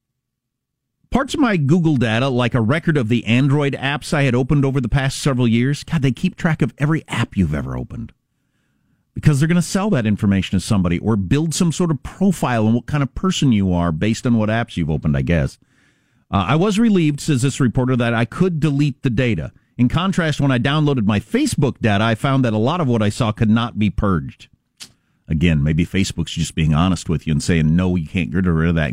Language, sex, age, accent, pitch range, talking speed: English, male, 50-69, American, 100-145 Hz, 230 wpm